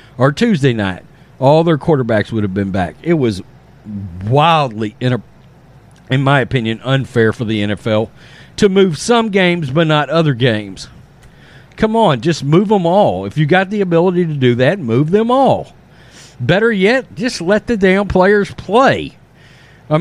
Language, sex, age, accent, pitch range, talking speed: English, male, 50-69, American, 130-195 Hz, 170 wpm